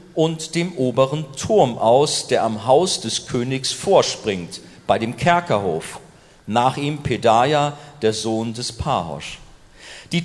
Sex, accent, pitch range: male, German, 120-155 Hz